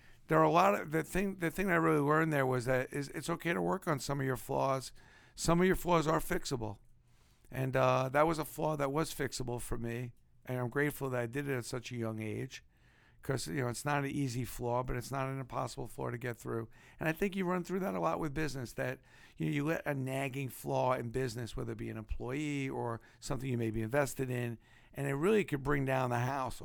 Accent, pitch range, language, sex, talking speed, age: American, 120-145 Hz, English, male, 250 wpm, 50-69